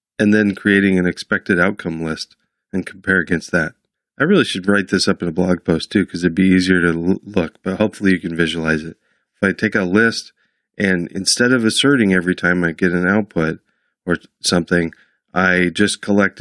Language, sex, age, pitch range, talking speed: English, male, 40-59, 85-100 Hz, 205 wpm